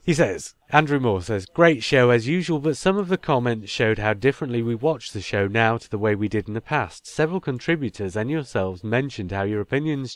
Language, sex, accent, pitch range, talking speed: English, male, British, 100-140 Hz, 225 wpm